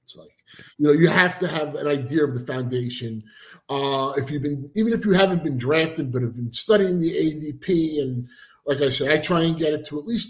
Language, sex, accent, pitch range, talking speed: English, male, American, 135-175 Hz, 240 wpm